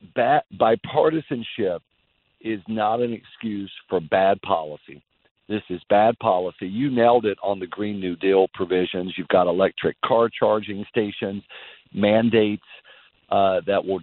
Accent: American